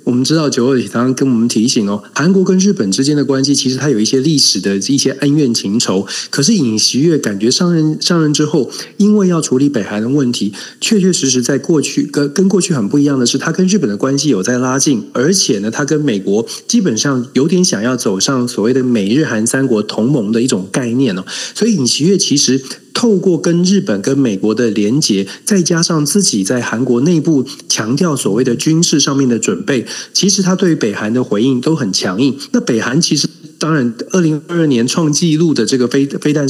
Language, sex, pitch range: Chinese, male, 125-175 Hz